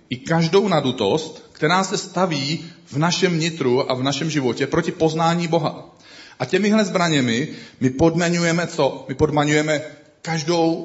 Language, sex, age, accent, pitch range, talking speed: Czech, male, 40-59, native, 120-145 Hz, 135 wpm